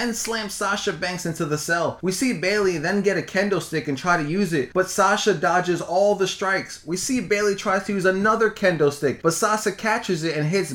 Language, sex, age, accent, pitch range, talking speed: English, male, 20-39, American, 165-210 Hz, 230 wpm